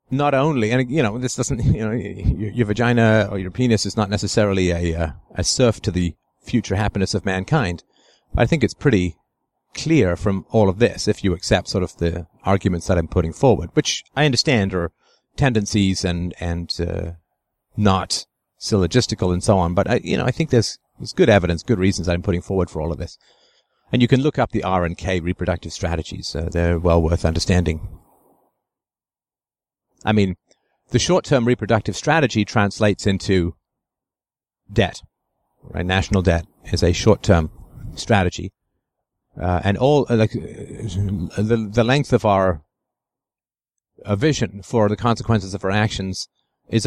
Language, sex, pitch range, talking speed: English, male, 90-120 Hz, 165 wpm